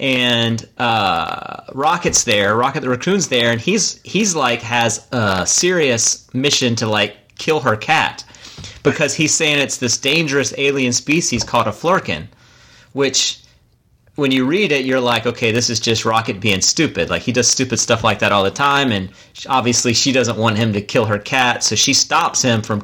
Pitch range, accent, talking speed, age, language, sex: 110-135 Hz, American, 185 wpm, 30-49, English, male